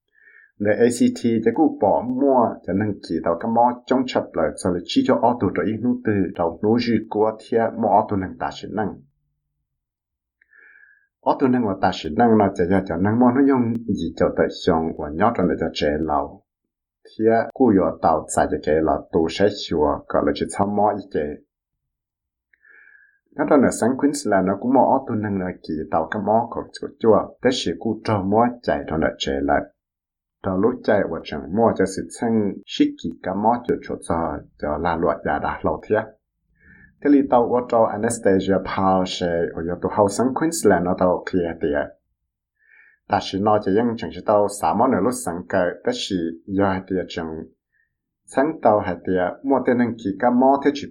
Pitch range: 95-130 Hz